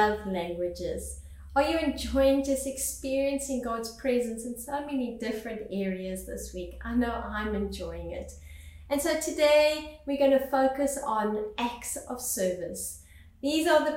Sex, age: female, 30-49